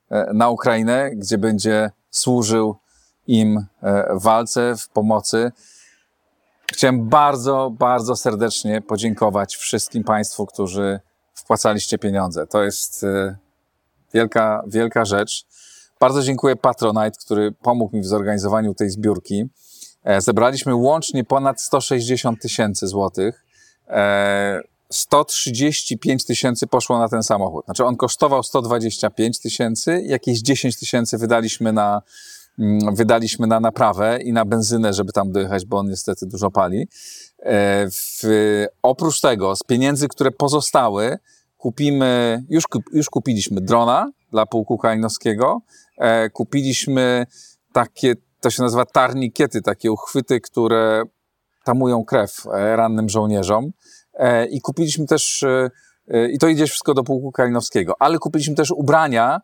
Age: 40-59